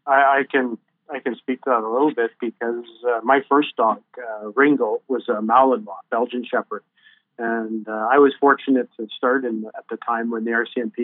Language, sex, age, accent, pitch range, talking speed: English, male, 40-59, American, 115-135 Hz, 200 wpm